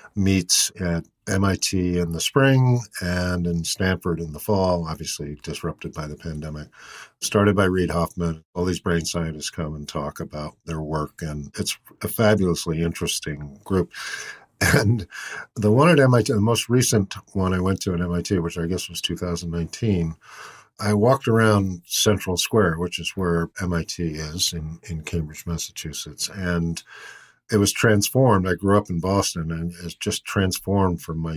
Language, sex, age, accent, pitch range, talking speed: English, male, 50-69, American, 80-95 Hz, 165 wpm